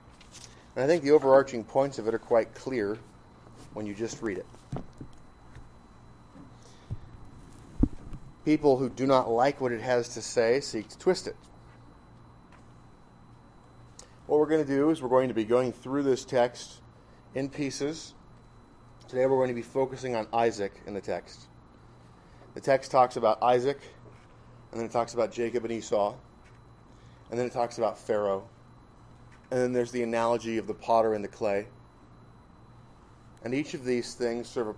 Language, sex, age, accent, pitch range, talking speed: English, male, 30-49, American, 100-130 Hz, 160 wpm